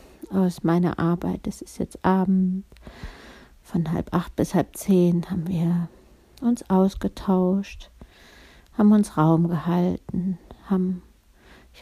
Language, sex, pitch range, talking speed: German, female, 170-195 Hz, 115 wpm